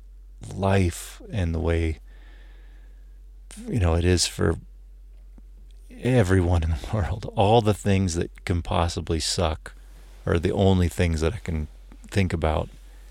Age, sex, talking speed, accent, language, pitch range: 30-49, male, 135 wpm, American, English, 75-100 Hz